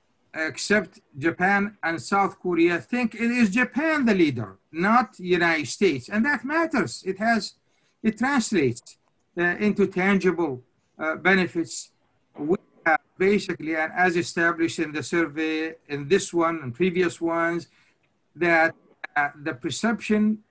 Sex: male